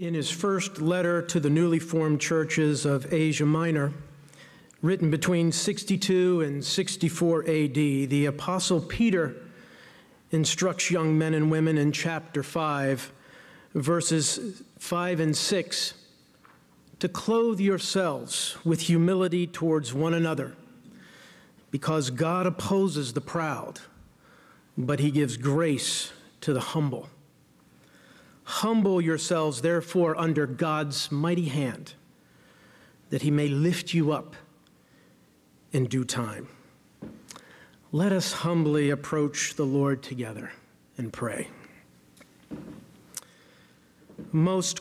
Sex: male